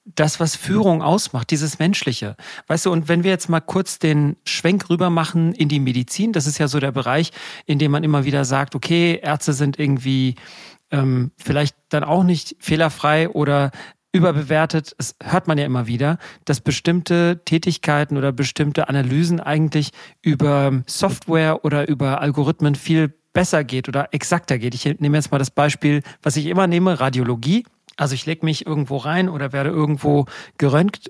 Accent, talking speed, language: German, 175 wpm, German